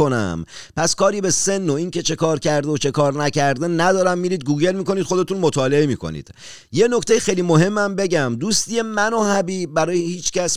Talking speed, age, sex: 195 wpm, 40-59, male